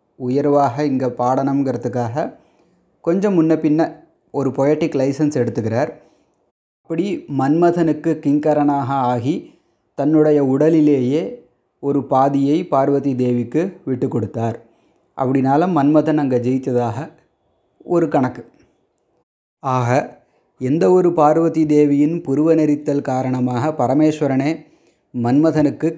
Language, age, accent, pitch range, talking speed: Tamil, 30-49, native, 125-155 Hz, 90 wpm